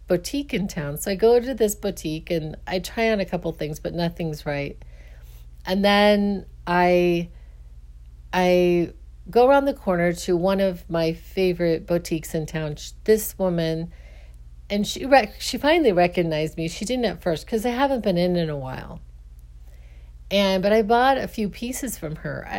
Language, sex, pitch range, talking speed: English, female, 155-220 Hz, 170 wpm